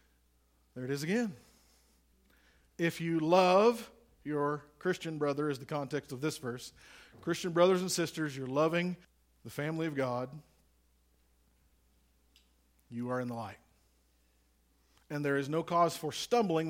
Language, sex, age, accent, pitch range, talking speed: English, male, 50-69, American, 135-205 Hz, 135 wpm